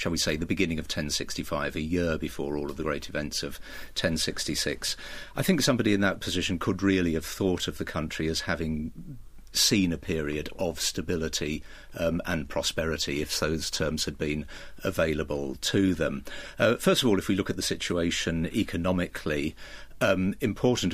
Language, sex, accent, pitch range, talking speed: English, male, British, 80-90 Hz, 175 wpm